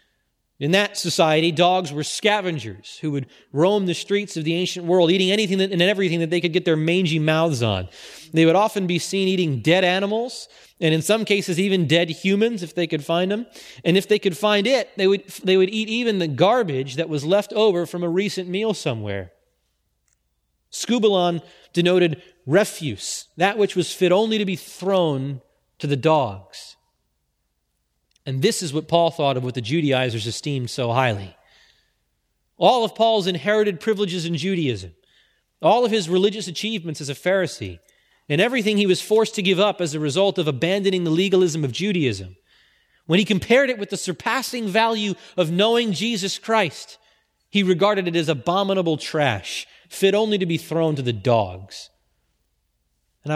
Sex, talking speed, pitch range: male, 175 wpm, 145-200 Hz